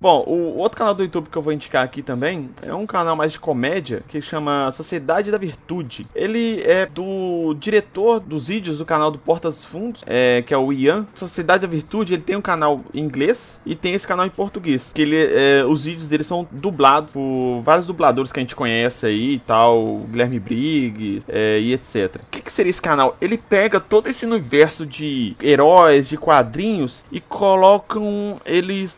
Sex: male